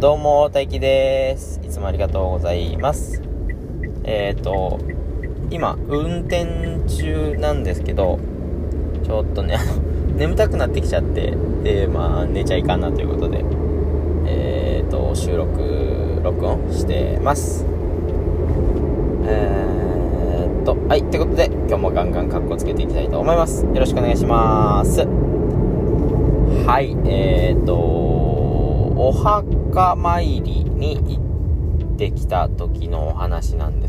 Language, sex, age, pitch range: Japanese, male, 20-39, 75-90 Hz